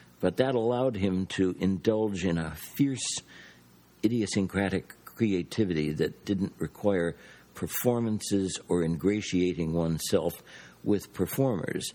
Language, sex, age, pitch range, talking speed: English, male, 60-79, 80-105 Hz, 100 wpm